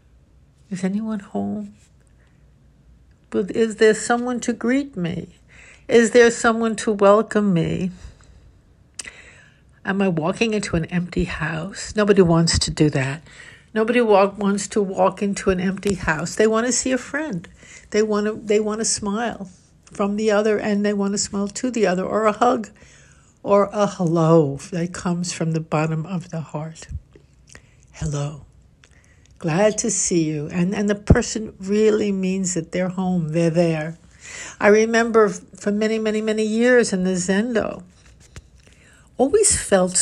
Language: English